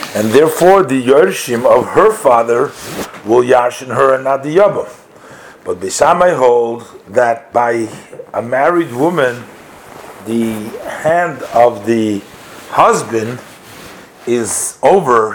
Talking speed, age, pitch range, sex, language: 115 wpm, 50-69, 120-170 Hz, male, English